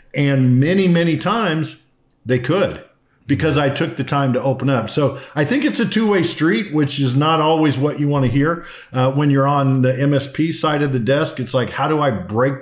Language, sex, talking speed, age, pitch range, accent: English, male, 220 wpm, 50-69, 125-165 Hz, American